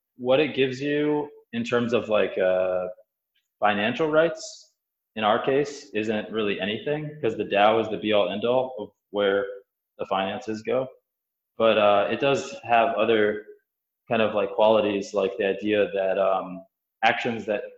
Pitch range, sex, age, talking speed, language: 100-120 Hz, male, 20-39, 160 wpm, English